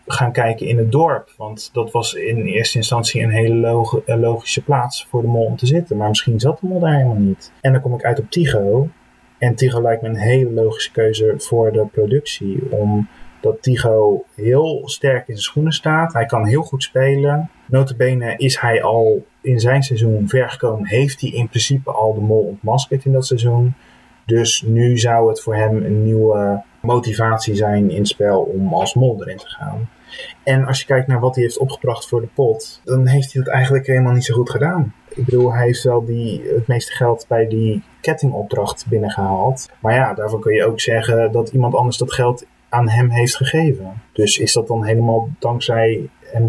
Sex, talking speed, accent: male, 200 wpm, Dutch